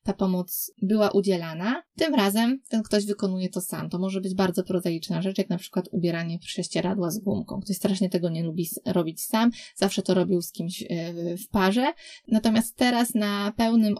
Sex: female